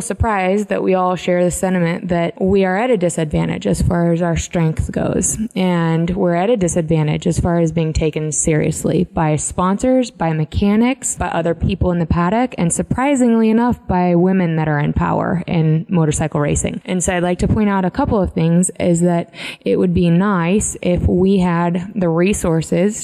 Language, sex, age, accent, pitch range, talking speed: English, female, 20-39, American, 165-195 Hz, 195 wpm